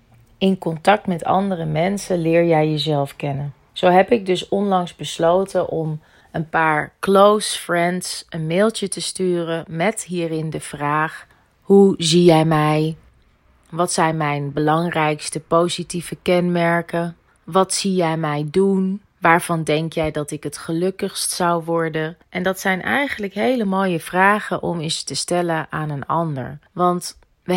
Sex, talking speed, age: female, 150 wpm, 30-49